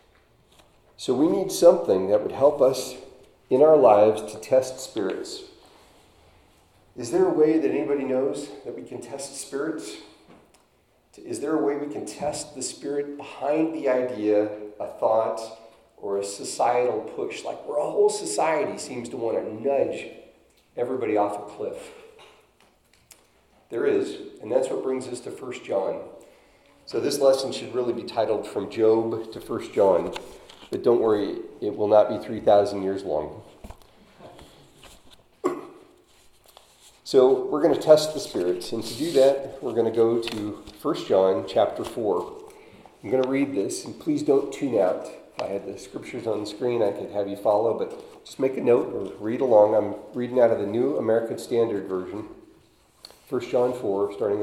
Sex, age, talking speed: male, 40-59, 170 wpm